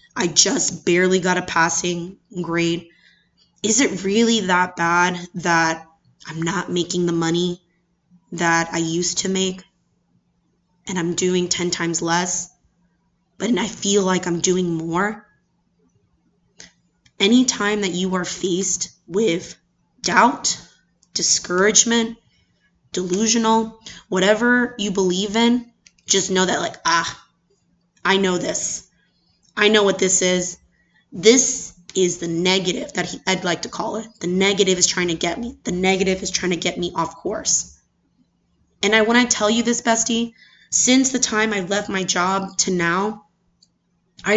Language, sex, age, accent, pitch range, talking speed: English, female, 20-39, American, 175-205 Hz, 145 wpm